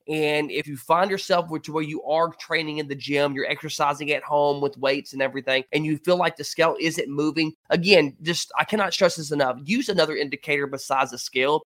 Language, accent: English, American